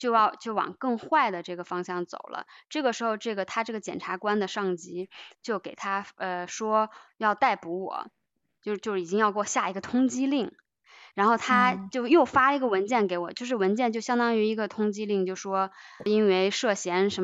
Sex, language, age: female, Chinese, 20-39